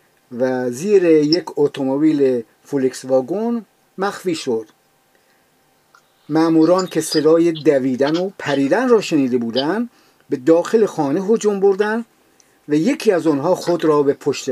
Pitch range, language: 140-185 Hz, Persian